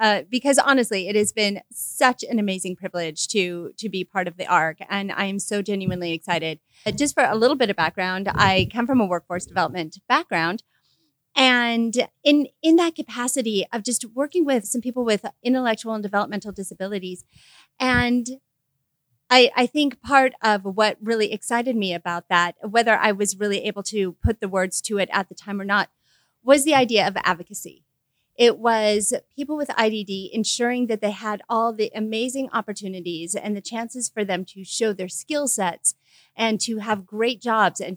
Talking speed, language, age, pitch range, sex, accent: 180 wpm, English, 30-49, 190-245 Hz, female, American